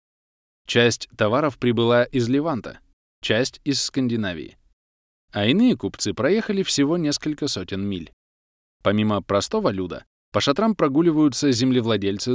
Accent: native